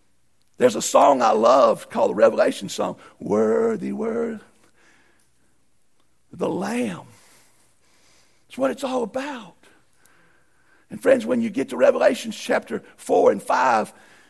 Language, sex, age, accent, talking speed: English, male, 60-79, American, 120 wpm